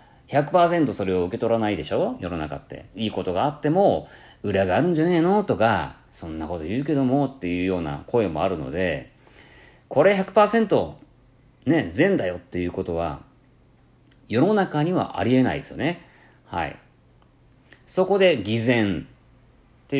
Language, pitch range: Japanese, 105-160 Hz